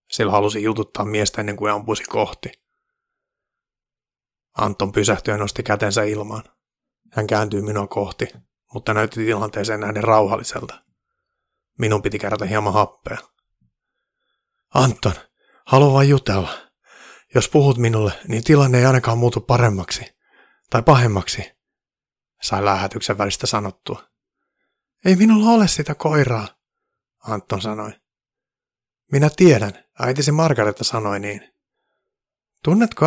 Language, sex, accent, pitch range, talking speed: Finnish, male, native, 105-170 Hz, 110 wpm